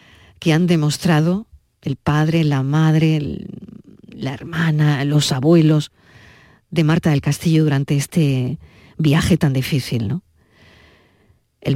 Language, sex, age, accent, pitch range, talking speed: Spanish, female, 50-69, Spanish, 140-165 Hz, 115 wpm